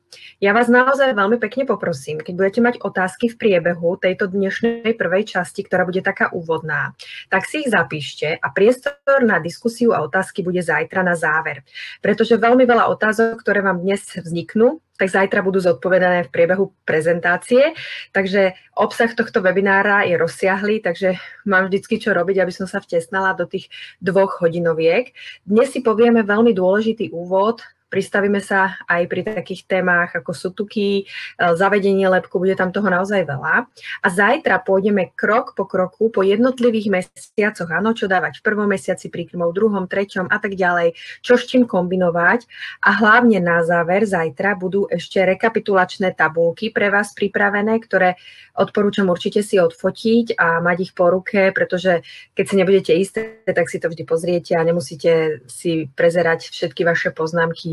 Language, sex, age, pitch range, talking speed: Slovak, female, 20-39, 175-210 Hz, 160 wpm